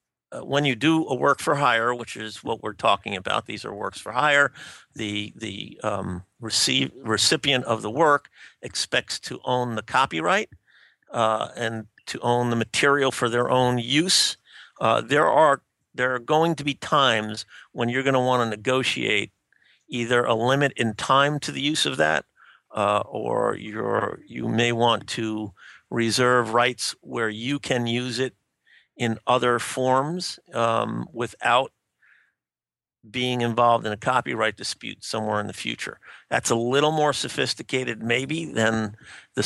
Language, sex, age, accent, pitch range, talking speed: English, male, 50-69, American, 110-130 Hz, 160 wpm